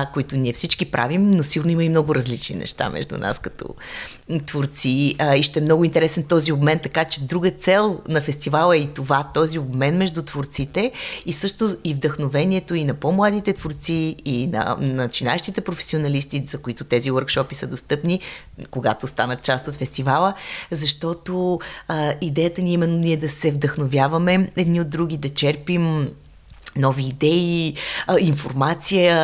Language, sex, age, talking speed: Bulgarian, female, 30-49, 150 wpm